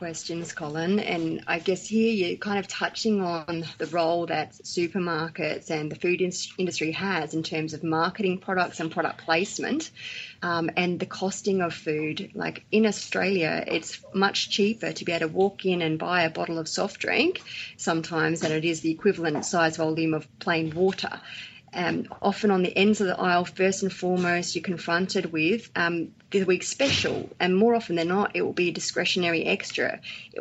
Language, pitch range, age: English, 165-195 Hz, 30-49